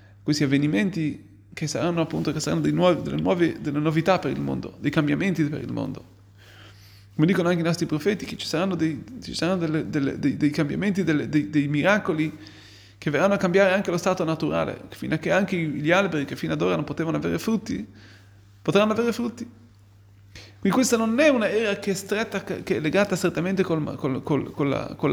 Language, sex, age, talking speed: Italian, male, 30-49, 205 wpm